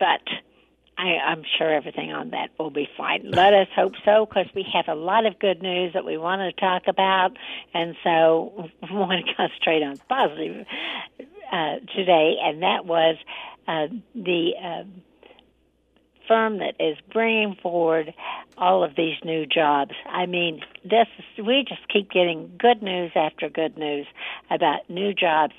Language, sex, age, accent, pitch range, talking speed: English, female, 60-79, American, 170-215 Hz, 160 wpm